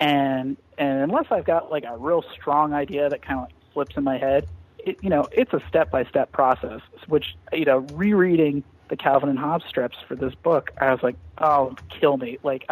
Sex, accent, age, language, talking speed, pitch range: male, American, 30-49, English, 200 wpm, 130-150 Hz